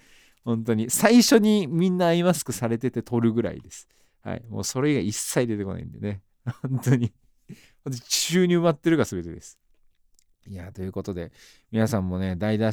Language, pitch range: Japanese, 110-155 Hz